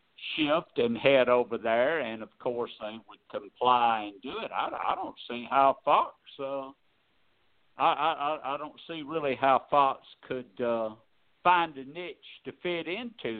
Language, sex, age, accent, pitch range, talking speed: English, male, 60-79, American, 120-160 Hz, 160 wpm